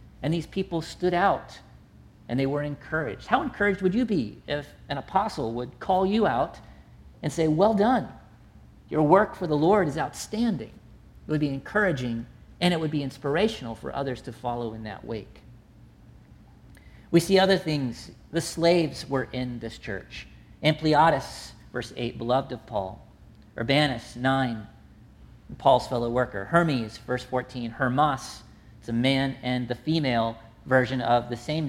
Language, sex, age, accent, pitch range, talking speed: English, male, 40-59, American, 120-160 Hz, 155 wpm